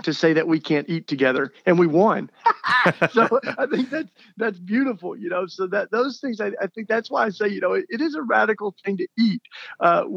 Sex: male